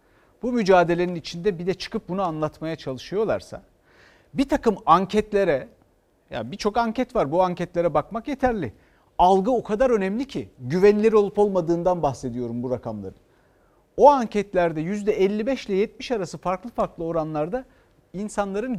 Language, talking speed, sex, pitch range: Turkish, 130 wpm, male, 155-225 Hz